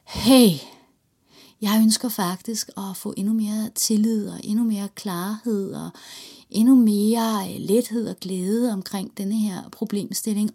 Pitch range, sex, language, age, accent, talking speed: 205-245 Hz, female, Dutch, 30-49, Danish, 130 wpm